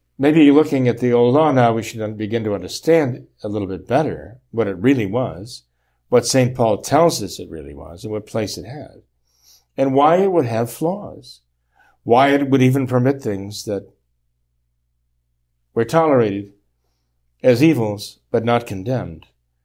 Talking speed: 160 wpm